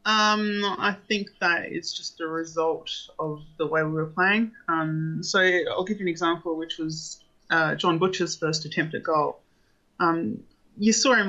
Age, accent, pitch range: 20-39, Australian, 160-195 Hz